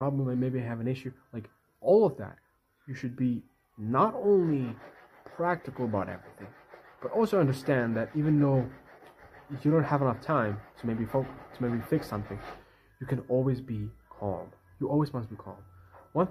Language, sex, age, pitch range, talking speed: English, male, 20-39, 105-140 Hz, 175 wpm